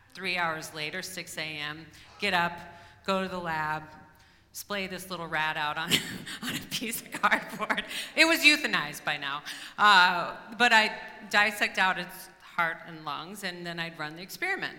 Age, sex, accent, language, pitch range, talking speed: 40-59, female, American, English, 155-195 Hz, 170 wpm